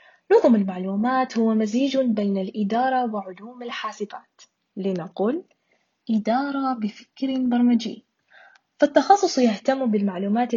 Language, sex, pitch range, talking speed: Arabic, female, 200-260 Hz, 85 wpm